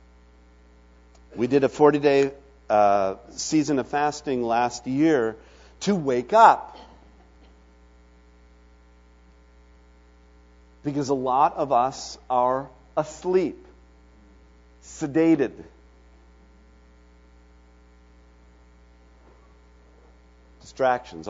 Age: 50-69